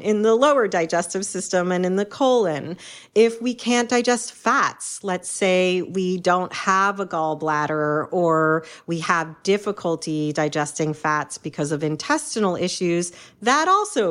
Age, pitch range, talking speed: 40-59, 175-215 Hz, 140 wpm